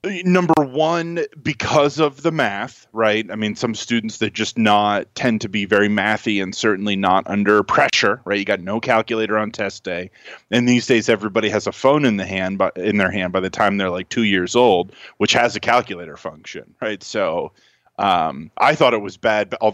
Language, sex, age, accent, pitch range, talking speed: English, male, 30-49, American, 105-145 Hz, 210 wpm